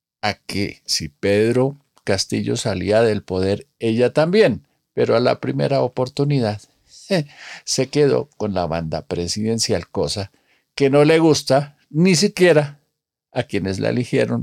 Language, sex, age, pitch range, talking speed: Spanish, male, 50-69, 95-140 Hz, 135 wpm